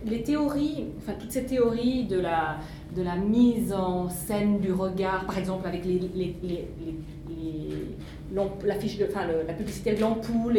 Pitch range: 180-235 Hz